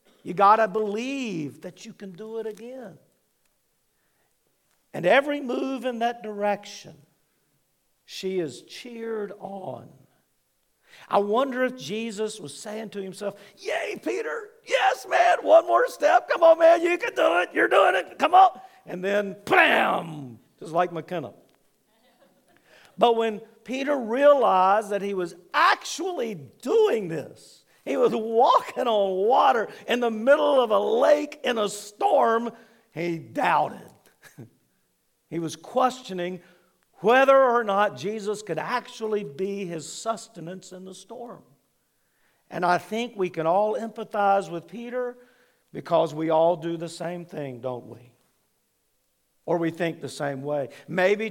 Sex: male